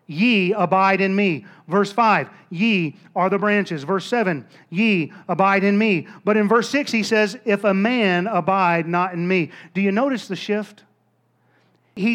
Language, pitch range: English, 185-225 Hz